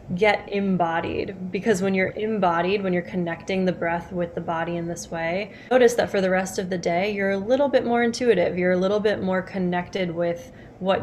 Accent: American